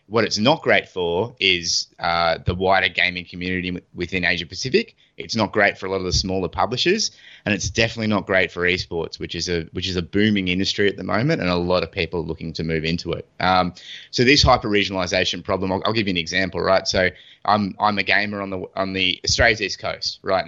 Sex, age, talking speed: male, 20-39, 230 wpm